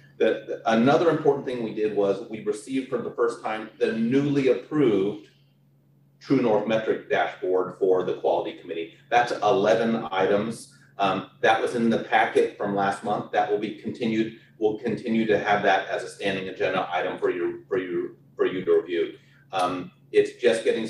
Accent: American